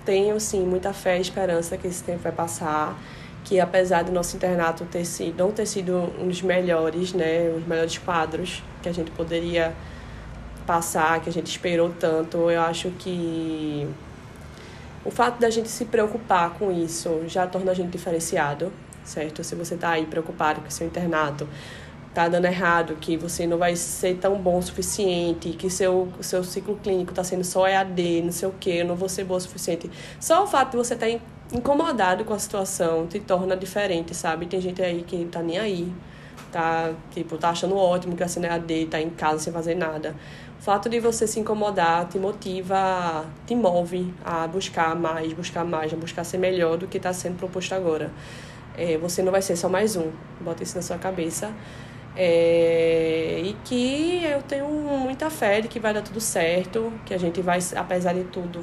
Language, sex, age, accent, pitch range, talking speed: Portuguese, female, 20-39, Brazilian, 170-195 Hz, 195 wpm